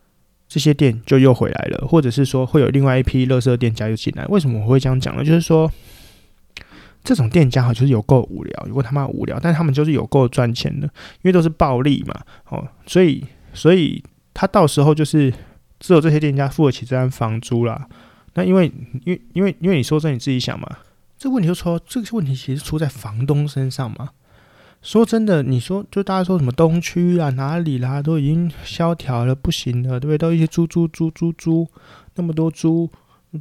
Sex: male